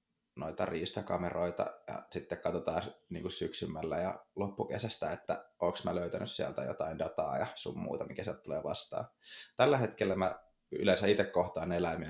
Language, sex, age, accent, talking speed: Finnish, male, 20-39, native, 155 wpm